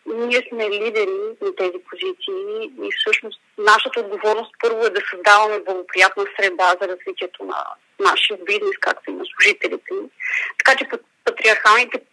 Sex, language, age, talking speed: female, Bulgarian, 30-49, 150 wpm